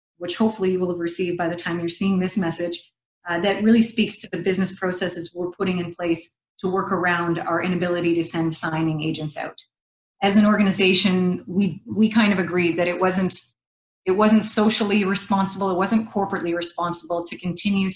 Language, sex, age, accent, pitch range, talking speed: English, female, 30-49, American, 170-195 Hz, 185 wpm